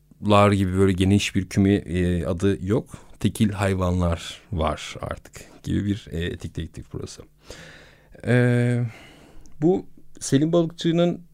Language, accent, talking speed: Turkish, native, 120 wpm